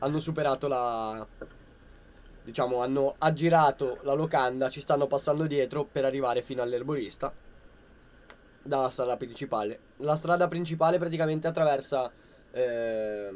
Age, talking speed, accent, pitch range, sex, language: 20-39, 110 wpm, native, 120-150 Hz, male, Italian